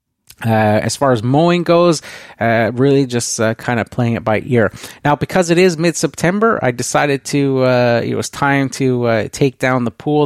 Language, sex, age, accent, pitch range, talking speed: English, male, 30-49, American, 115-145 Hz, 195 wpm